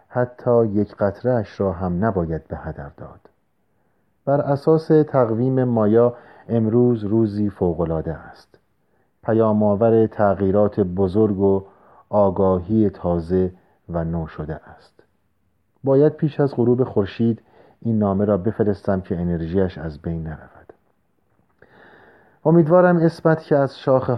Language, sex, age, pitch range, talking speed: Persian, male, 40-59, 90-120 Hz, 115 wpm